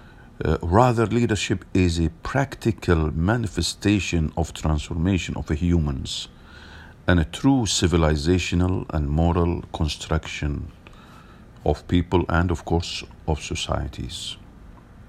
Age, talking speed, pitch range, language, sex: 50-69, 95 wpm, 80-100 Hz, English, male